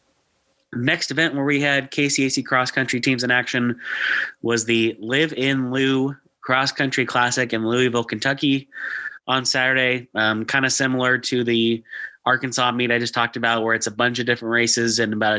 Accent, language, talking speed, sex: American, English, 175 wpm, male